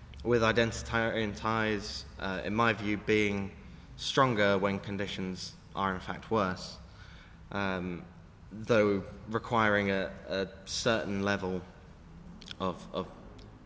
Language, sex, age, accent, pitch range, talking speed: English, male, 20-39, British, 90-110 Hz, 105 wpm